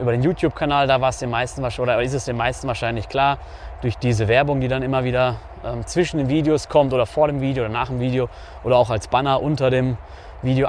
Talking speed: 235 wpm